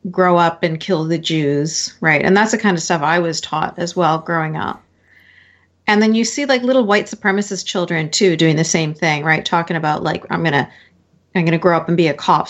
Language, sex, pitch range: English, female, 155-210 Hz